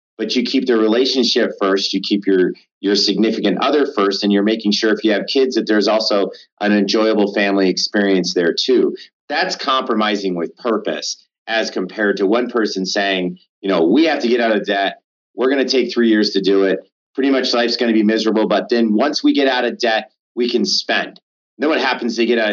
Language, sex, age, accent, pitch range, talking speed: English, male, 30-49, American, 100-120 Hz, 220 wpm